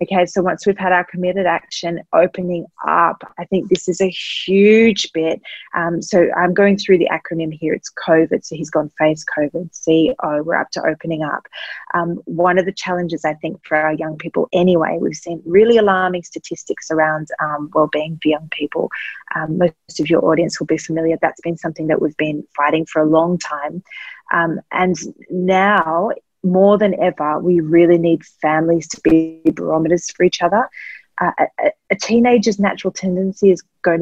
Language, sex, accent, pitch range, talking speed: English, female, Australian, 160-185 Hz, 185 wpm